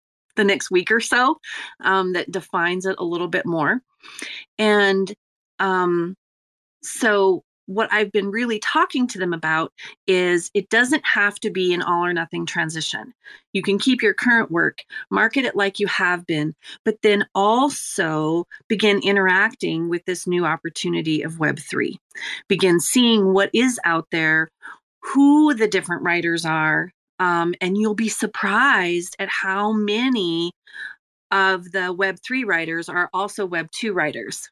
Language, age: English, 30-49